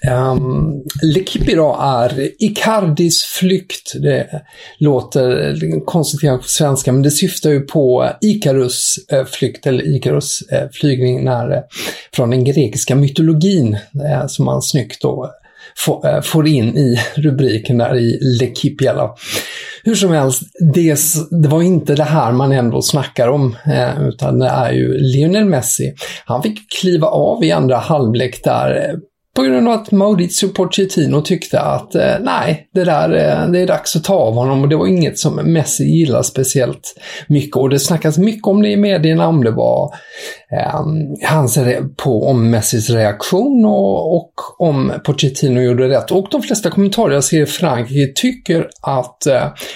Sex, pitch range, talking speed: male, 130-180 Hz, 145 wpm